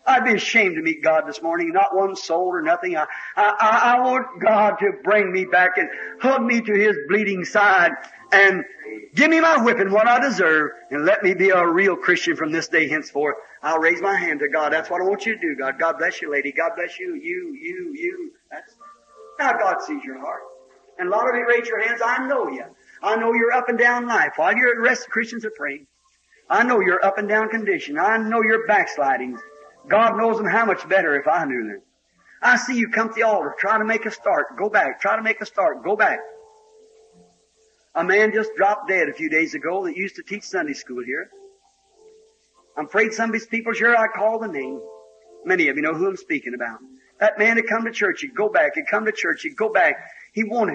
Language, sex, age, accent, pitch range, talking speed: English, male, 50-69, American, 190-265 Hz, 235 wpm